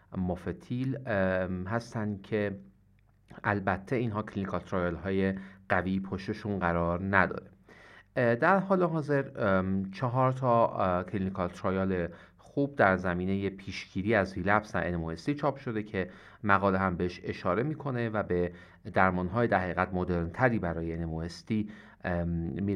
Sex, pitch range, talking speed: male, 95-115 Hz, 115 wpm